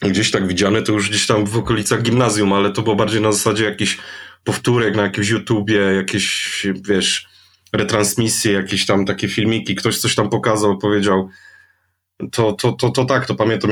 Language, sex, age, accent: Polish, male, 20-39, native